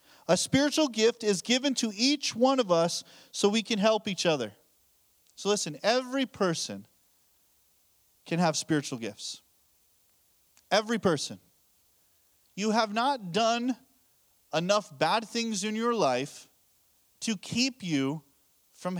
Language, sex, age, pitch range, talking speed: English, male, 40-59, 175-245 Hz, 125 wpm